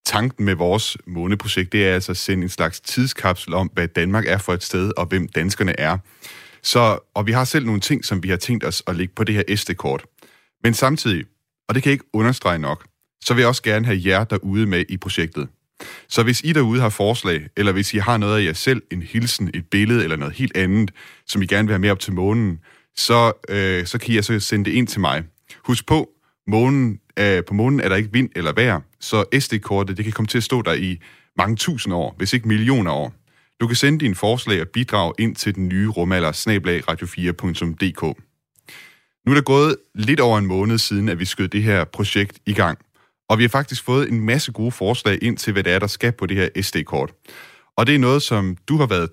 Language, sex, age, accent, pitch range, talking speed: Danish, male, 30-49, native, 95-120 Hz, 235 wpm